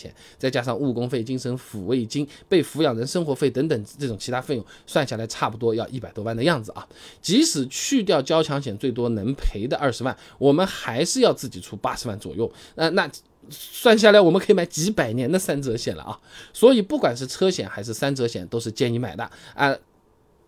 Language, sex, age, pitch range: Chinese, male, 20-39, 125-195 Hz